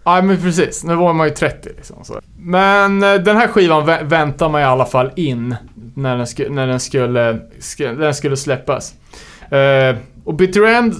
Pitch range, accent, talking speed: 125-165 Hz, Norwegian, 190 wpm